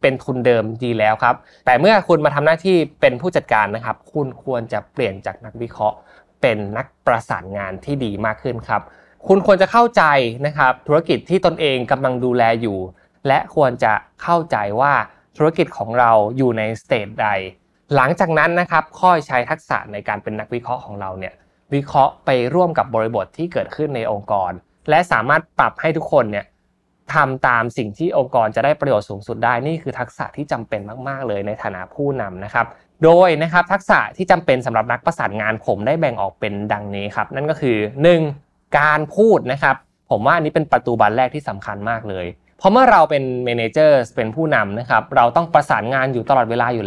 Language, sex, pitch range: Thai, male, 110-155 Hz